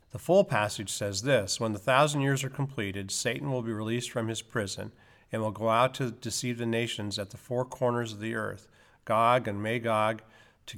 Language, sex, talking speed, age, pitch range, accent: English, male, 205 wpm, 40-59, 105-130 Hz, American